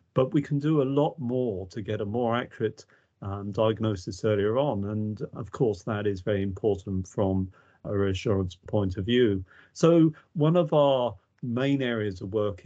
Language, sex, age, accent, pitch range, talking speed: English, male, 50-69, British, 100-130 Hz, 175 wpm